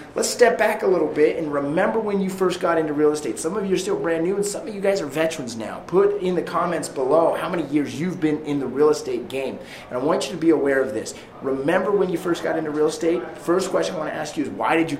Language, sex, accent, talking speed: English, male, American, 290 wpm